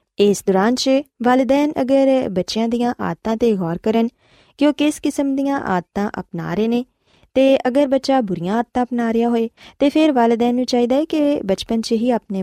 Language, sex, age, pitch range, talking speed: Urdu, female, 20-39, 185-265 Hz, 145 wpm